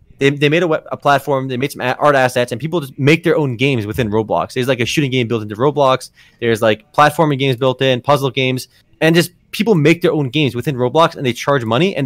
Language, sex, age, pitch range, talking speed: English, male, 20-39, 130-180 Hz, 250 wpm